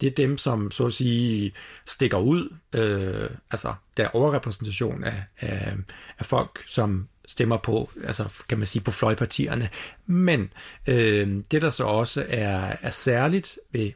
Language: Danish